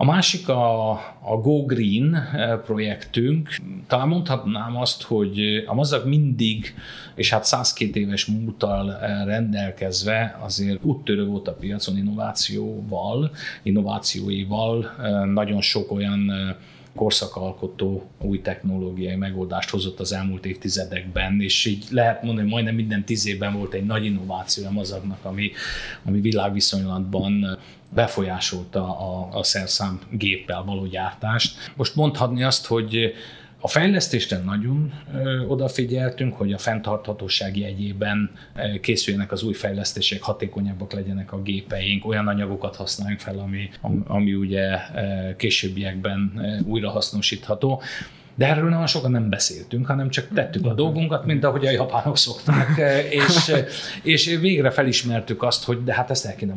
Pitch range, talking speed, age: 100-120 Hz, 125 wpm, 30-49